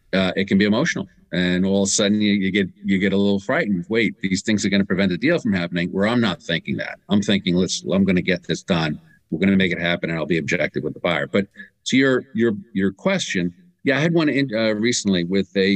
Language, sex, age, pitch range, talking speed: English, male, 50-69, 90-110 Hz, 270 wpm